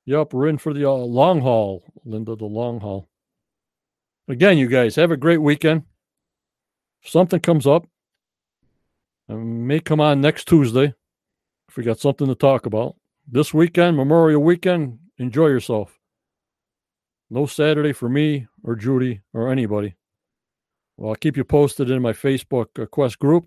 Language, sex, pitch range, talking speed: English, male, 115-155 Hz, 155 wpm